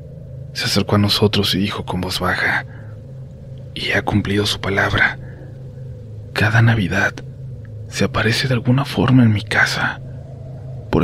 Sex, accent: male, Mexican